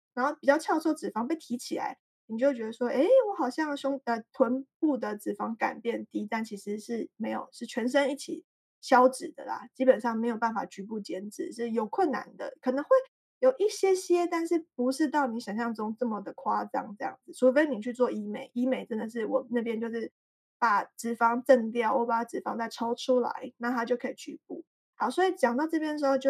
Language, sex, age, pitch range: Chinese, female, 20-39, 240-300 Hz